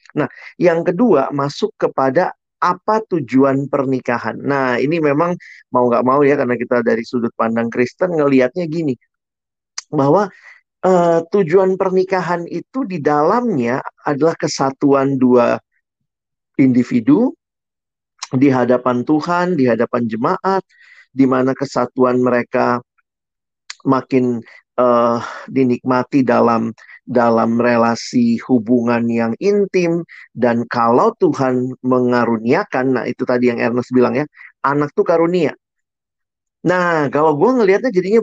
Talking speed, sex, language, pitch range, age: 115 wpm, male, Indonesian, 125-180 Hz, 50-69